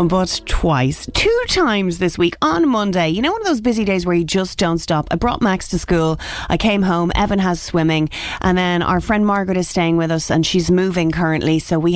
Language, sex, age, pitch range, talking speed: English, female, 30-49, 165-220 Hz, 230 wpm